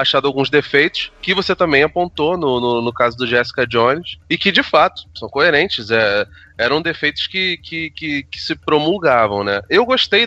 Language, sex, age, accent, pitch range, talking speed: Portuguese, male, 20-39, Brazilian, 140-200 Hz, 170 wpm